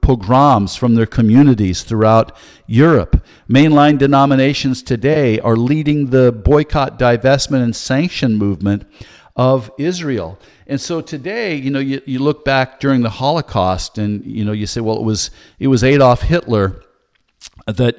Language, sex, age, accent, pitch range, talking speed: English, male, 50-69, American, 105-135 Hz, 145 wpm